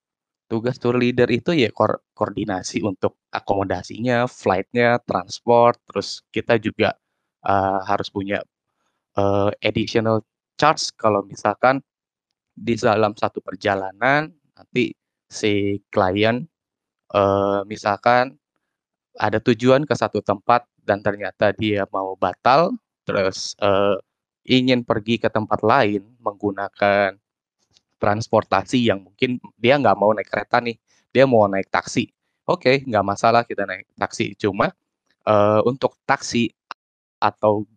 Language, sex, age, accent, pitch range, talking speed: Indonesian, male, 20-39, native, 100-120 Hz, 110 wpm